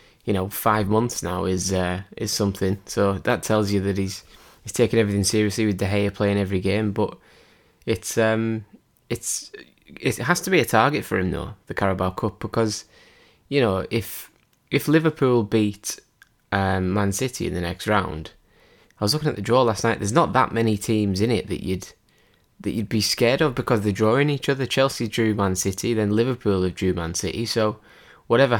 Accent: British